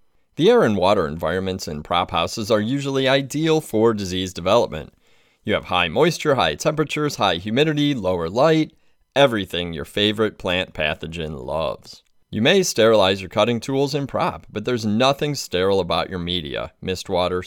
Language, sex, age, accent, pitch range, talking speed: English, male, 30-49, American, 90-125 Hz, 160 wpm